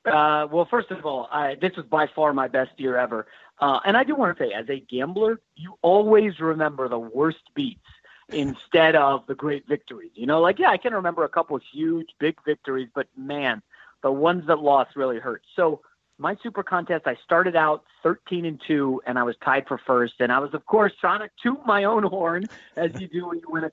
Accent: American